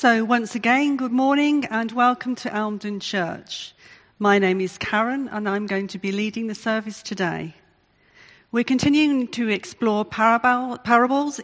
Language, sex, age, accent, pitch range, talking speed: English, female, 50-69, British, 190-245 Hz, 145 wpm